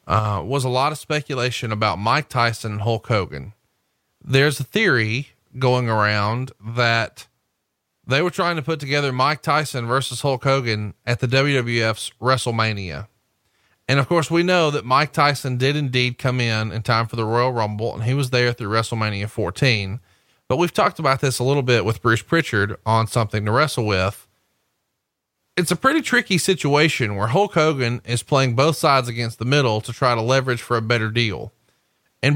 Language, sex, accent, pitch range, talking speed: English, male, American, 115-145 Hz, 180 wpm